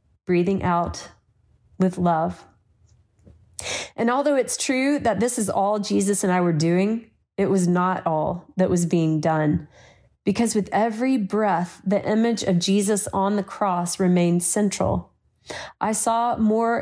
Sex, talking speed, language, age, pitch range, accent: female, 145 wpm, English, 30-49, 175-215 Hz, American